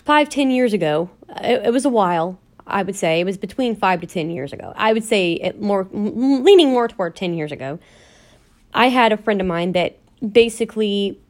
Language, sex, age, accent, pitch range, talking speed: English, female, 30-49, American, 180-235 Hz, 205 wpm